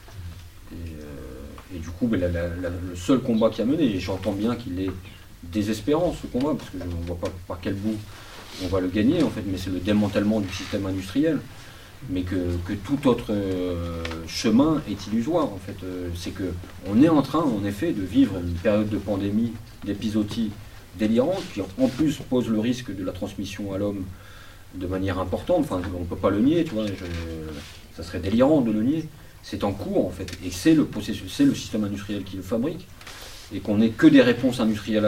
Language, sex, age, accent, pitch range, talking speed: French, male, 40-59, French, 90-110 Hz, 210 wpm